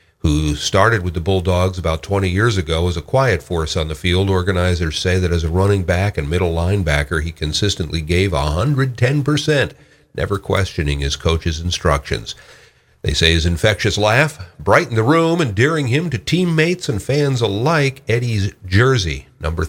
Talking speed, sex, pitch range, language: 160 wpm, male, 85-115 Hz, English